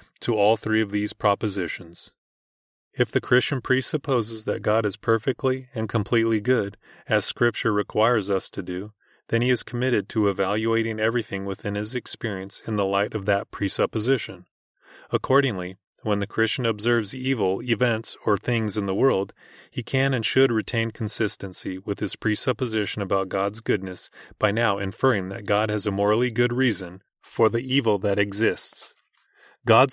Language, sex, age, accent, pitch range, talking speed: English, male, 30-49, American, 100-125 Hz, 160 wpm